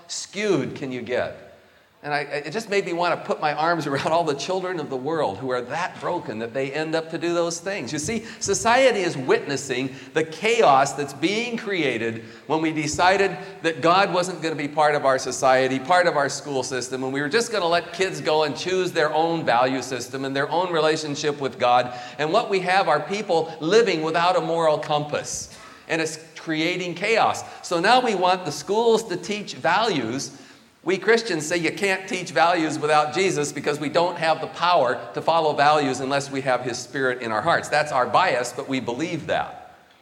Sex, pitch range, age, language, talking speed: male, 140-185 Hz, 40-59, English, 210 wpm